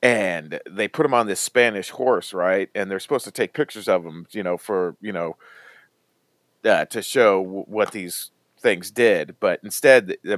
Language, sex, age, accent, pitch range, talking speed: English, male, 40-59, American, 95-125 Hz, 190 wpm